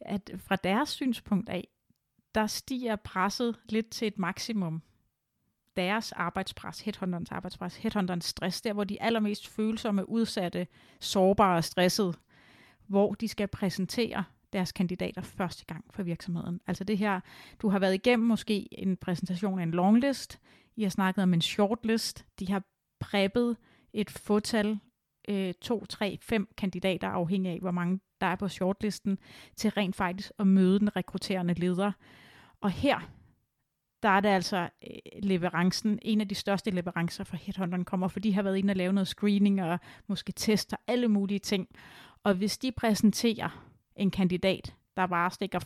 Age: 30-49